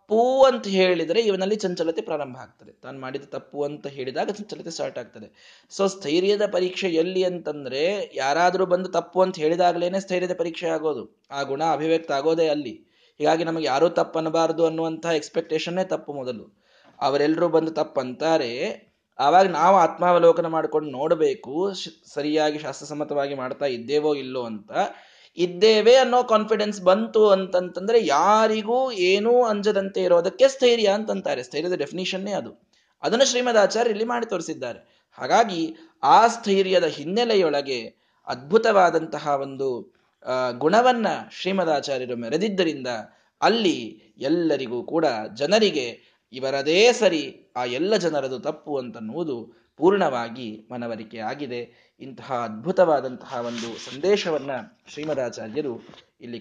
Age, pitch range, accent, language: 20-39, 130-195 Hz, native, Kannada